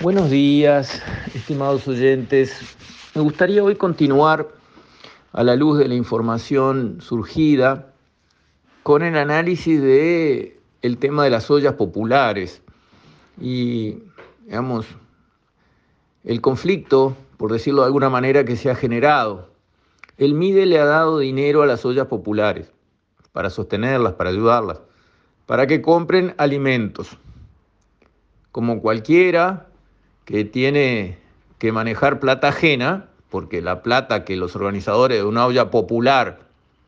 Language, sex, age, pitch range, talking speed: Spanish, male, 50-69, 105-150 Hz, 115 wpm